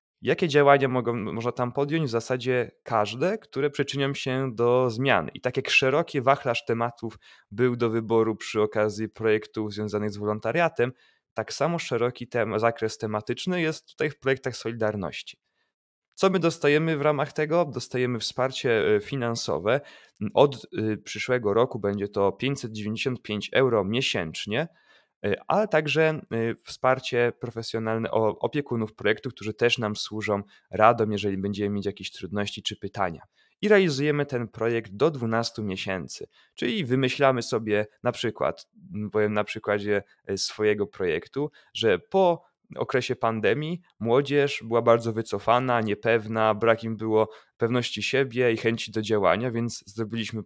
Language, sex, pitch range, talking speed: Polish, male, 110-135 Hz, 135 wpm